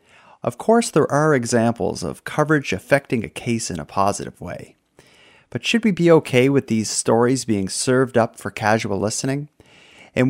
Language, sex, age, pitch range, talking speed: English, male, 40-59, 105-145 Hz, 170 wpm